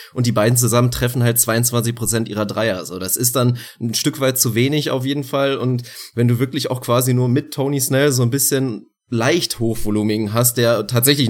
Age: 30-49